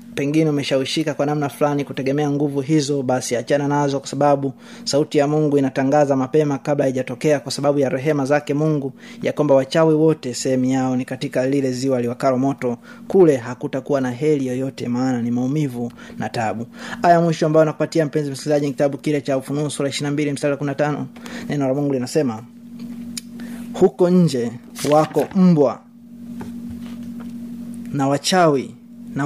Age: 20-39